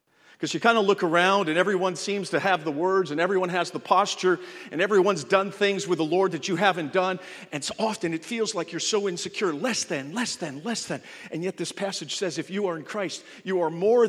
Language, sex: English, male